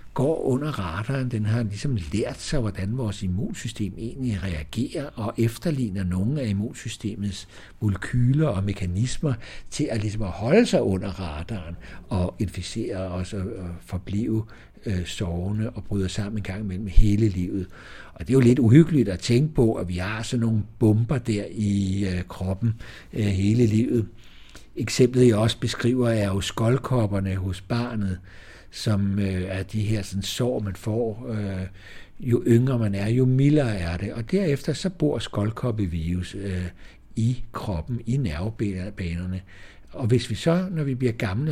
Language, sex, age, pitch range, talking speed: Danish, male, 60-79, 95-120 Hz, 160 wpm